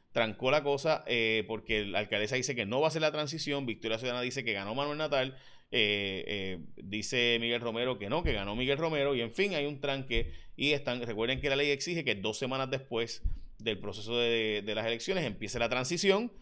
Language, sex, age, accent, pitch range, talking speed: Spanish, male, 30-49, Venezuelan, 110-135 Hz, 215 wpm